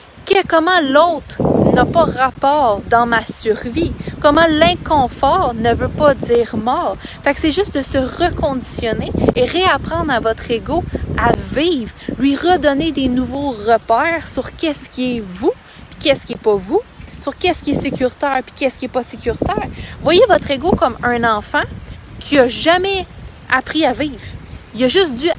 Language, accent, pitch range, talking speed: English, Canadian, 245-320 Hz, 175 wpm